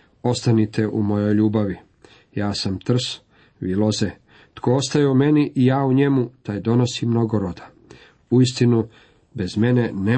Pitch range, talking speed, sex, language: 105-135 Hz, 155 wpm, male, Croatian